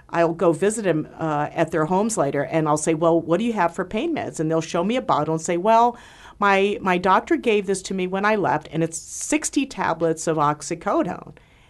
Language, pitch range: English, 155-190 Hz